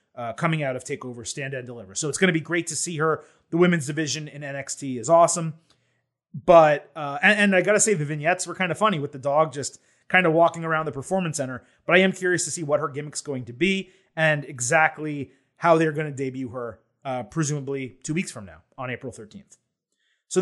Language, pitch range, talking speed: English, 145-180 Hz, 230 wpm